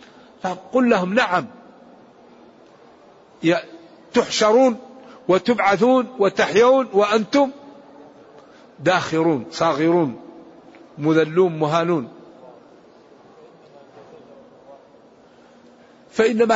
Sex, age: male, 50-69